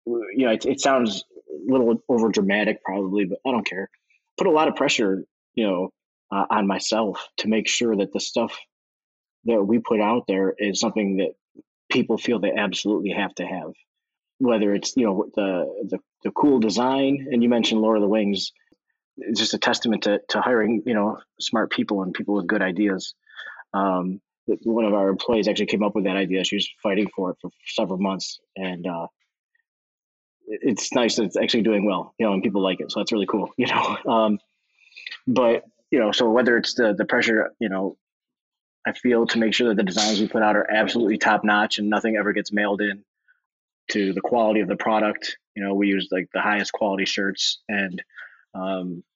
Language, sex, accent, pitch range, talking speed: English, male, American, 100-115 Hz, 205 wpm